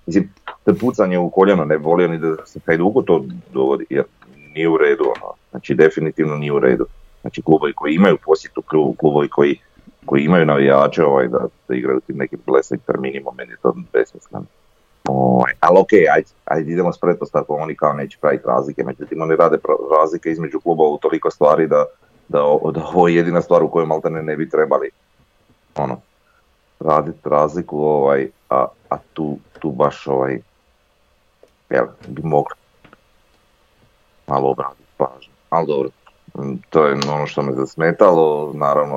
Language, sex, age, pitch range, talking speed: Croatian, male, 30-49, 65-85 Hz, 155 wpm